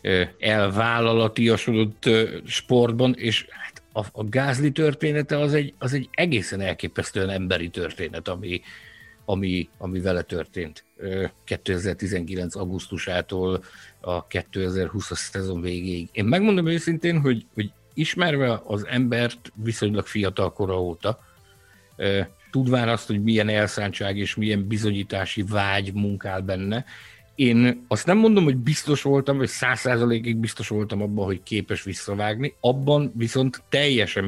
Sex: male